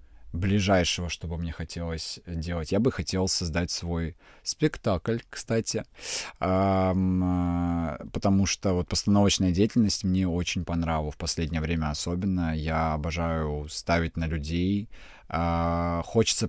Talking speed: 115 wpm